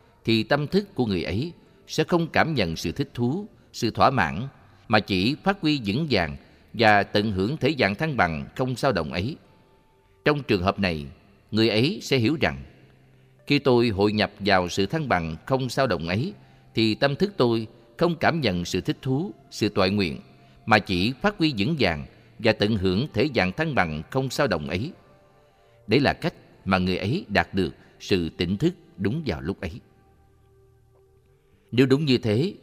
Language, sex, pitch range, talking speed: Vietnamese, male, 100-130 Hz, 190 wpm